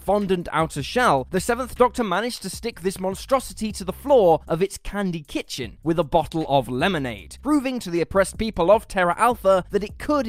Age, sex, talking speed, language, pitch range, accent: 10-29, male, 200 wpm, English, 160-230 Hz, British